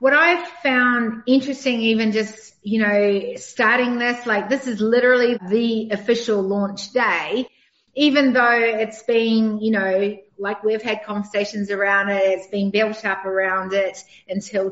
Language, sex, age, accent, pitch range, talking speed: English, female, 40-59, Australian, 210-270 Hz, 150 wpm